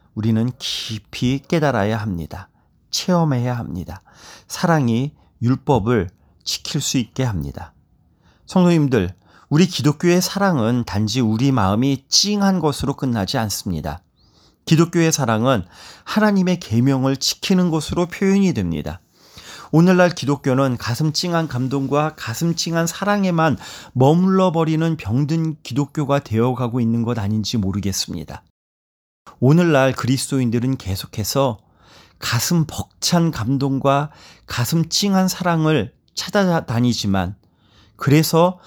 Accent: Korean